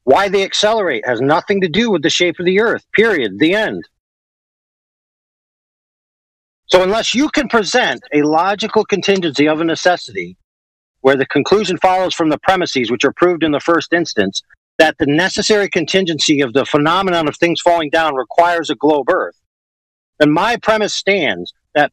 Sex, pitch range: male, 135-190 Hz